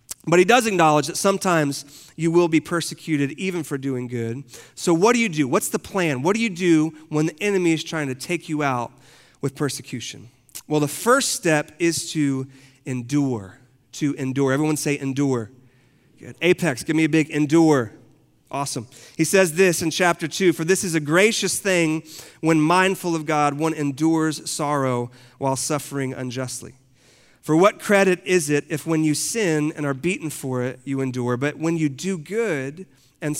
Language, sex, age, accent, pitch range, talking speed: English, male, 40-59, American, 130-165 Hz, 180 wpm